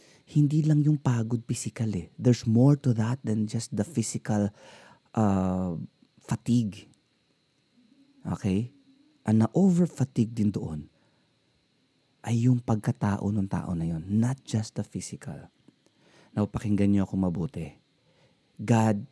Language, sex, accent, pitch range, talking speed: Filipino, male, native, 105-145 Hz, 120 wpm